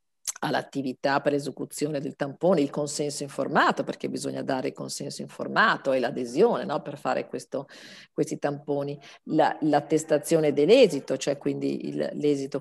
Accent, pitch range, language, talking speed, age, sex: native, 140-155 Hz, Italian, 140 wpm, 50-69, female